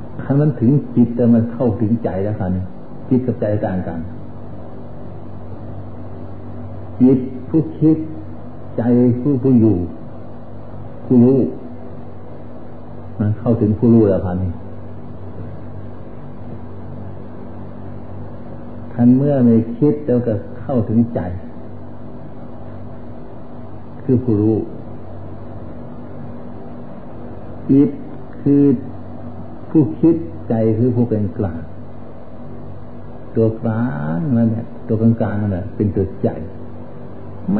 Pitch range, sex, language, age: 100-120 Hz, male, Thai, 60-79